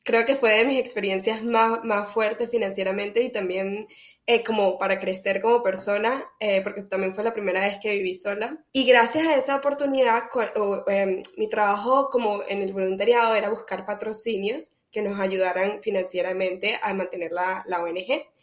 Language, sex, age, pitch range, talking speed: Spanish, female, 10-29, 195-245 Hz, 175 wpm